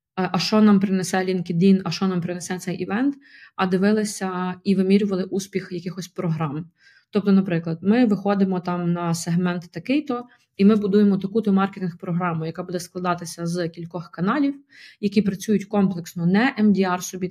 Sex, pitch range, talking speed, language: female, 170-200 Hz, 150 wpm, Ukrainian